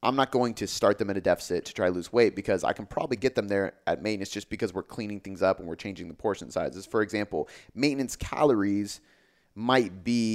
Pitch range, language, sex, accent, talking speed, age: 95-110 Hz, English, male, American, 240 wpm, 30-49